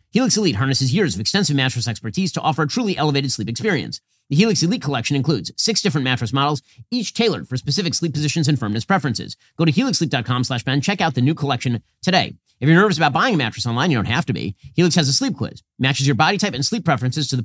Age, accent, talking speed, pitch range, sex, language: 40-59, American, 240 wpm, 125-170 Hz, male, English